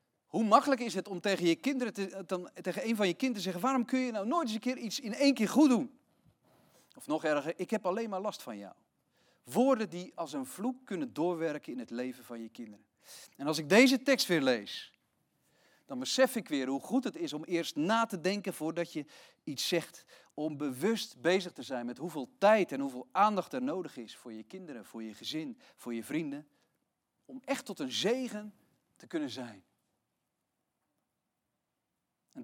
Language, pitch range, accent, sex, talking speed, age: Dutch, 155-230 Hz, Dutch, male, 205 wpm, 40-59